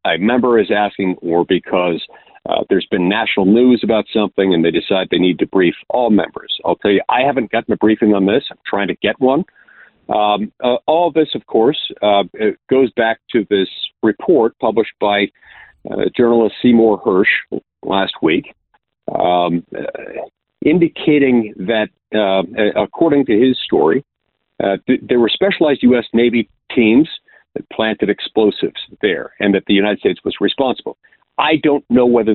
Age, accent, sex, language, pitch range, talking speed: 50-69, American, male, English, 105-160 Hz, 170 wpm